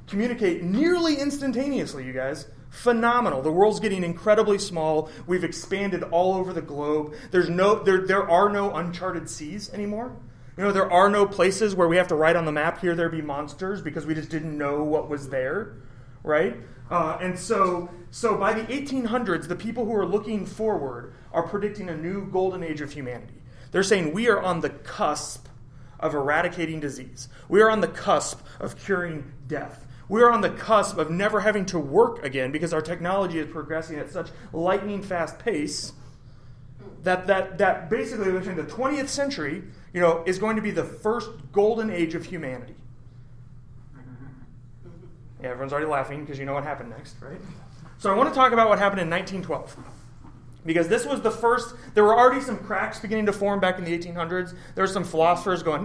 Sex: male